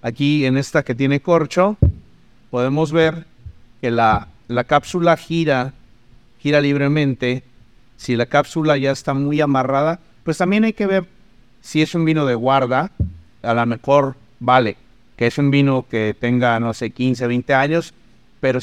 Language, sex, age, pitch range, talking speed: Spanish, male, 50-69, 120-145 Hz, 160 wpm